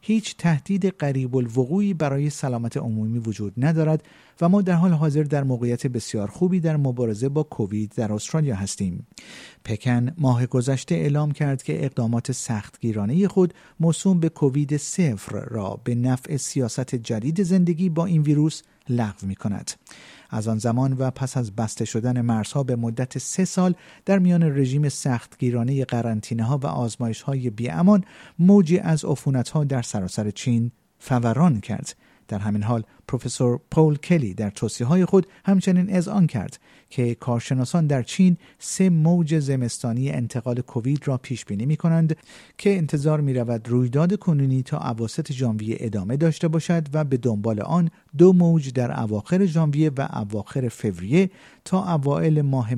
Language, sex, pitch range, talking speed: Persian, male, 120-160 Hz, 145 wpm